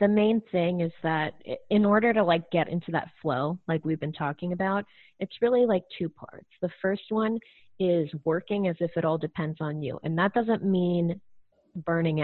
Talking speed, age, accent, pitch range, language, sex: 195 wpm, 30-49, American, 160-195 Hz, English, female